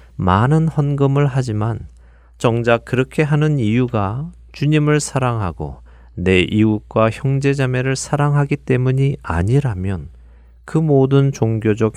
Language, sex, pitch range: Korean, male, 85-135 Hz